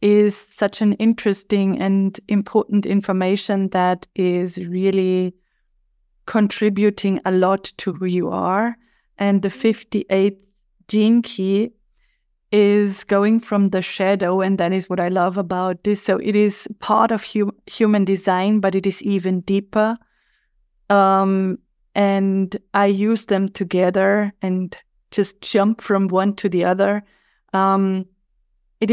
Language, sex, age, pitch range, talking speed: English, female, 20-39, 190-210 Hz, 130 wpm